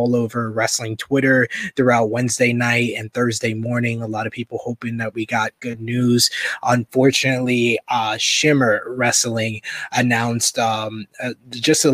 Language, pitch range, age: English, 115-130 Hz, 20-39